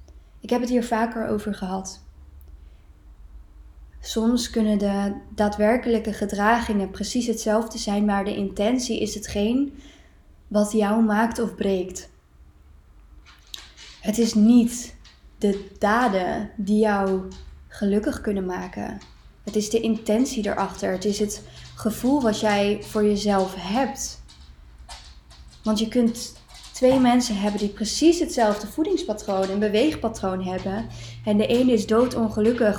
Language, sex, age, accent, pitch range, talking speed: Dutch, female, 20-39, Dutch, 185-220 Hz, 125 wpm